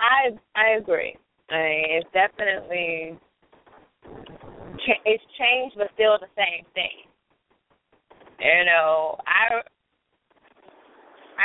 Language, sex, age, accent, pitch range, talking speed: English, female, 20-39, American, 190-240 Hz, 90 wpm